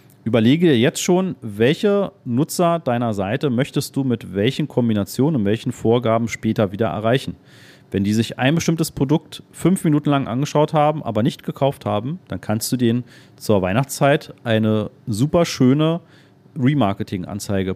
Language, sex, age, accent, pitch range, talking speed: German, male, 40-59, German, 110-150 Hz, 150 wpm